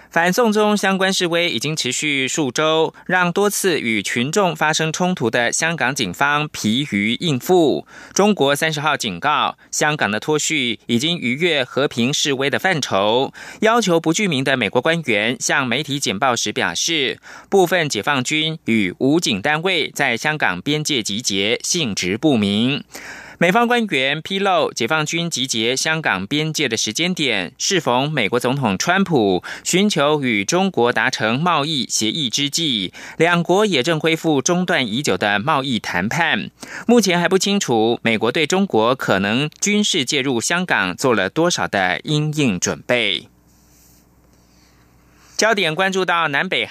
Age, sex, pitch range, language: 20-39, male, 125-180 Hz, German